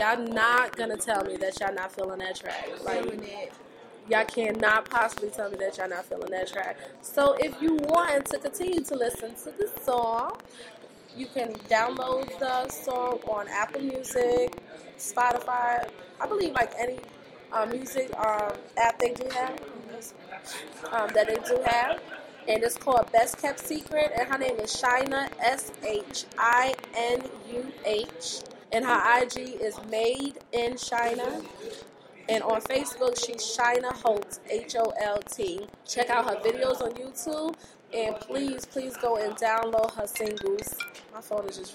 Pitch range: 220-265 Hz